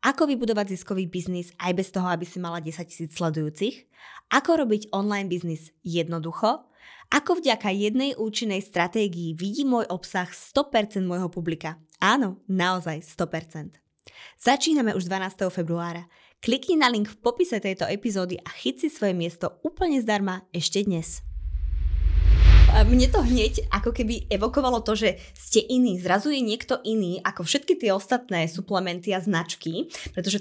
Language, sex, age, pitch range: Slovak, female, 20-39, 170-220 Hz